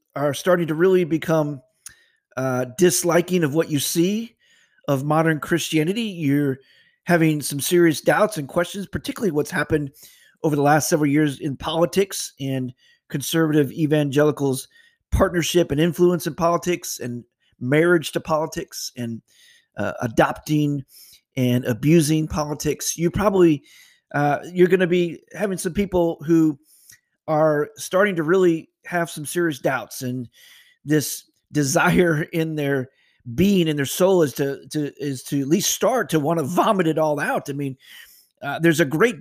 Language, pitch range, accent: English, 145-175 Hz, American